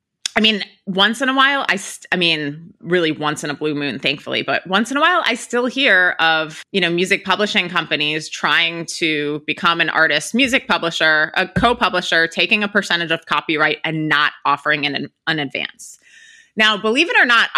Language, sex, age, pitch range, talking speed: English, female, 30-49, 155-195 Hz, 190 wpm